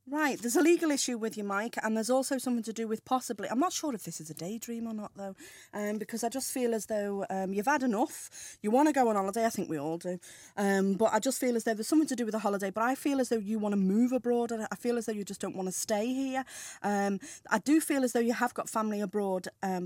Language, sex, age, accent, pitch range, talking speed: English, female, 30-49, British, 175-220 Hz, 295 wpm